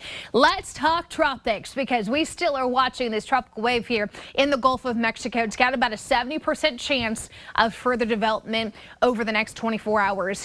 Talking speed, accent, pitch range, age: 180 wpm, American, 215-255 Hz, 20-39